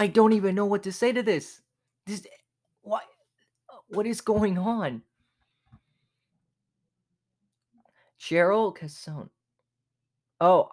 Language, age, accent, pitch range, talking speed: English, 20-39, American, 120-160 Hz, 100 wpm